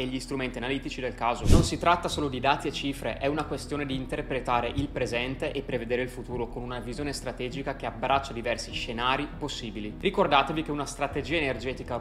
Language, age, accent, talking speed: Italian, 20-39, native, 190 wpm